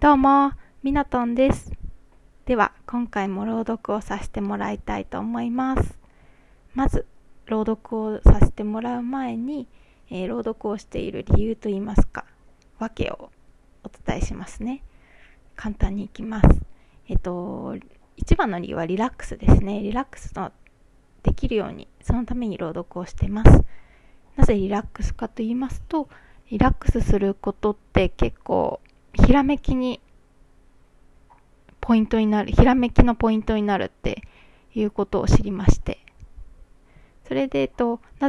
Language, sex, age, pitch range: Japanese, female, 20-39, 205-245 Hz